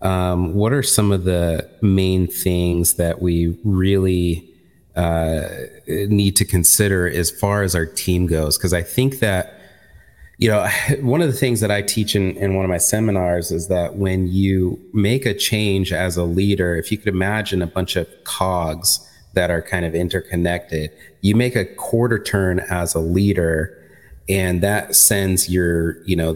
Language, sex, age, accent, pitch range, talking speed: English, male, 30-49, American, 85-100 Hz, 175 wpm